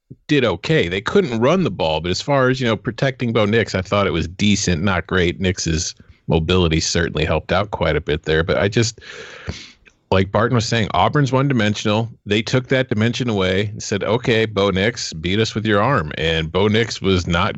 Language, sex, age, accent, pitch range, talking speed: English, male, 40-59, American, 95-120 Hz, 210 wpm